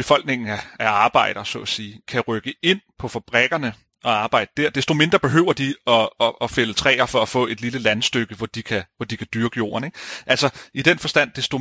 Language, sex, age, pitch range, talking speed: Danish, male, 30-49, 105-130 Hz, 220 wpm